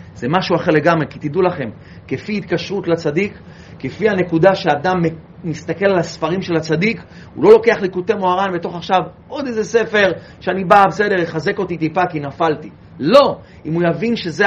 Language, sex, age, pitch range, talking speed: Hebrew, male, 30-49, 160-205 Hz, 170 wpm